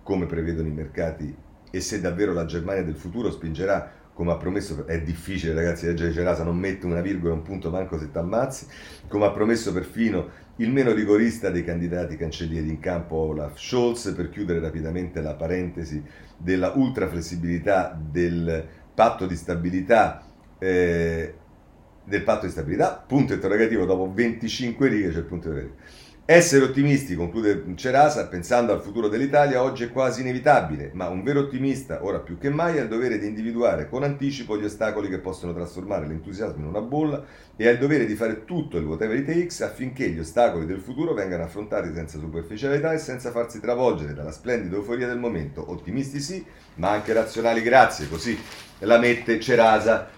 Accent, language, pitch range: native, Italian, 85-115 Hz